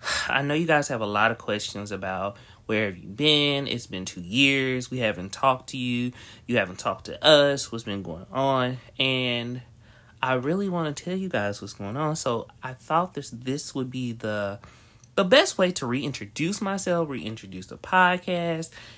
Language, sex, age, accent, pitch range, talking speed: English, male, 30-49, American, 110-145 Hz, 190 wpm